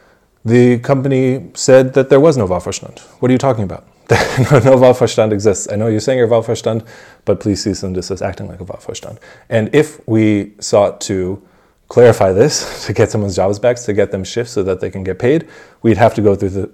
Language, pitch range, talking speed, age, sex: English, 95-115 Hz, 215 wpm, 20-39, male